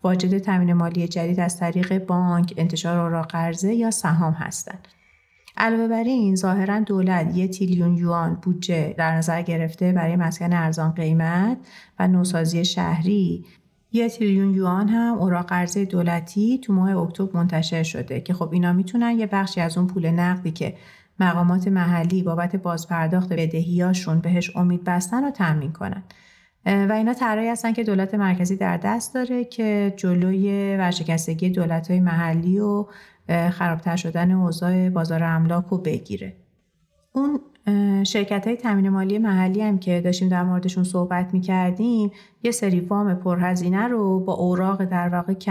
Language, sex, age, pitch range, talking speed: Persian, female, 30-49, 175-200 Hz, 145 wpm